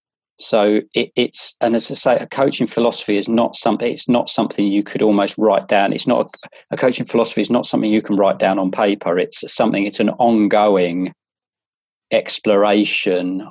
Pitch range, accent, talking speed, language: 95-110 Hz, British, 180 wpm, English